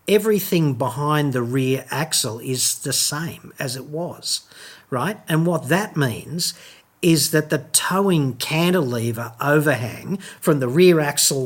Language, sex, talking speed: English, male, 135 wpm